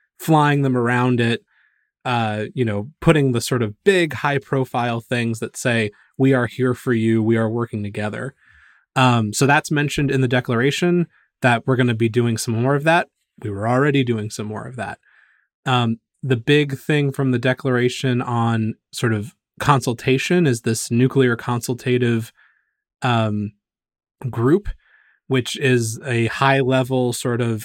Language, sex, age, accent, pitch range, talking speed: English, male, 20-39, American, 120-140 Hz, 165 wpm